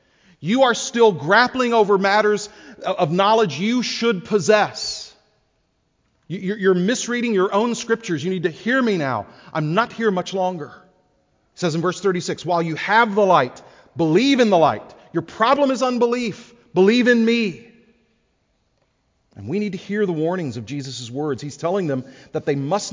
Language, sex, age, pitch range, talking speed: English, male, 40-59, 140-210 Hz, 165 wpm